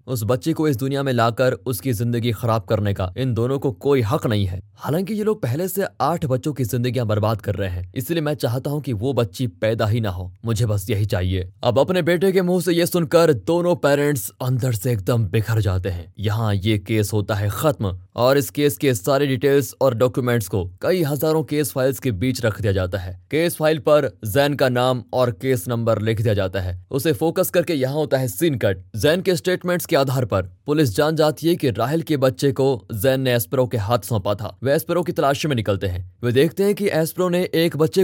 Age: 20-39